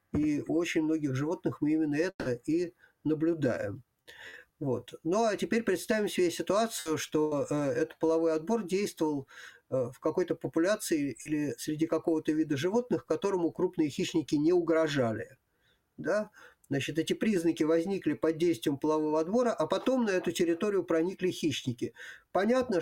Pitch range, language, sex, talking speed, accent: 155-185 Hz, Russian, male, 135 wpm, native